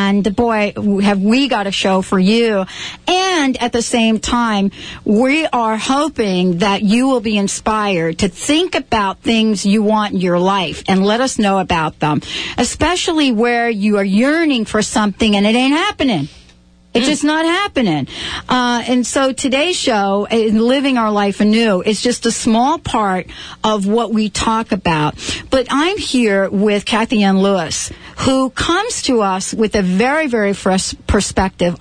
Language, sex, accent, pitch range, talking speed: English, female, American, 195-250 Hz, 175 wpm